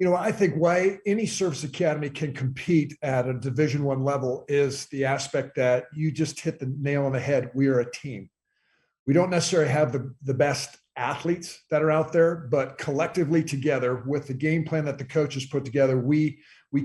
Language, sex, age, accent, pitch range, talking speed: English, male, 50-69, American, 135-160 Hz, 205 wpm